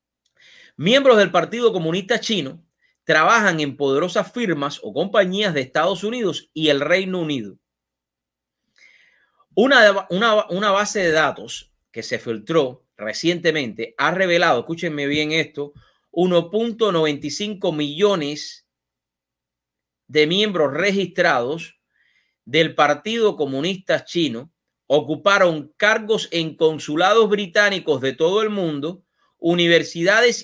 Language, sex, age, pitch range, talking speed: English, male, 30-49, 135-185 Hz, 105 wpm